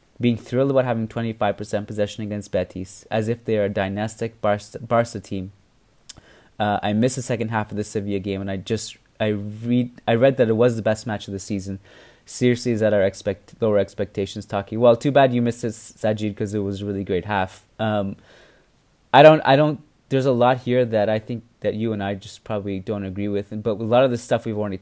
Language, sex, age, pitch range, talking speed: English, male, 30-49, 100-120 Hz, 230 wpm